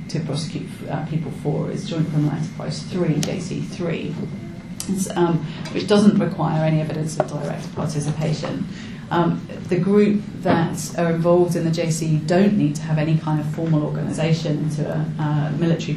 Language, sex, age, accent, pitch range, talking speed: English, female, 30-49, British, 165-200 Hz, 160 wpm